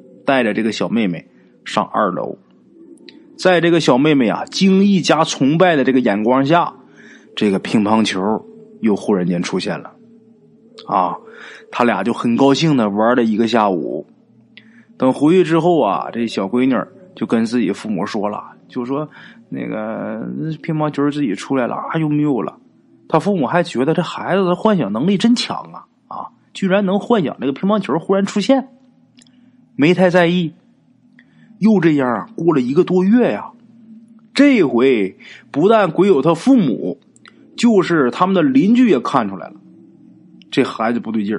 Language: Chinese